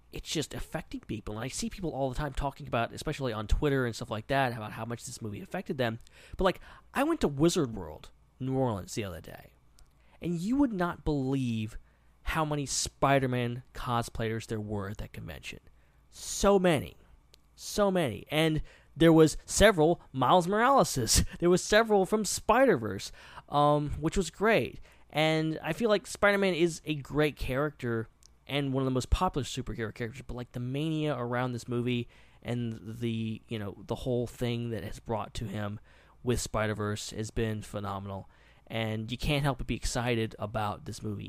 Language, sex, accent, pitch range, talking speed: English, male, American, 110-150 Hz, 180 wpm